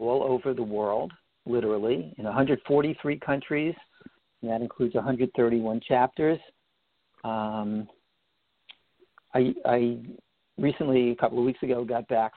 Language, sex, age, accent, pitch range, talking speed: English, male, 50-69, American, 120-140 Hz, 115 wpm